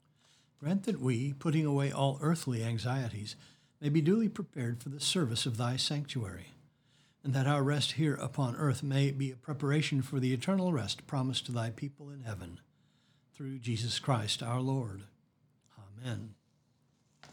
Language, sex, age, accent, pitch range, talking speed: English, male, 60-79, American, 125-150 Hz, 155 wpm